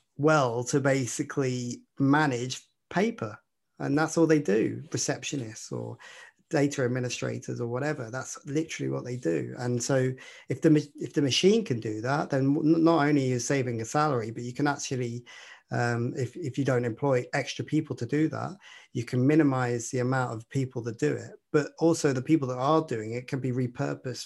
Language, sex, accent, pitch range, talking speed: English, male, British, 120-150 Hz, 185 wpm